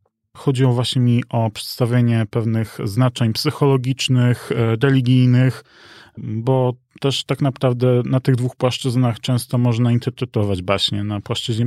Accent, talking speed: native, 115 wpm